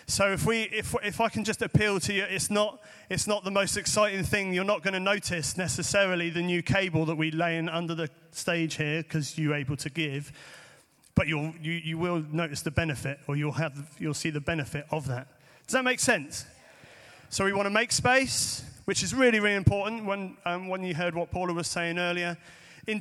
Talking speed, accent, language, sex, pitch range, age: 220 wpm, British, English, male, 160-195 Hz, 30-49